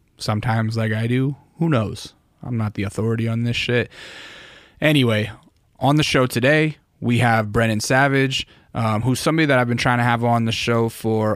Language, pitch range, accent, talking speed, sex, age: English, 110-125 Hz, American, 185 wpm, male, 20-39